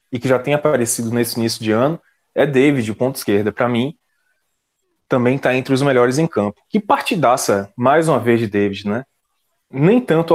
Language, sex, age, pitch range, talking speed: Portuguese, male, 20-39, 115-155 Hz, 190 wpm